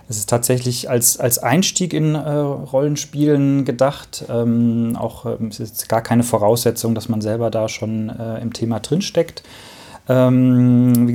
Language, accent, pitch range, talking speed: German, German, 110-125 Hz, 155 wpm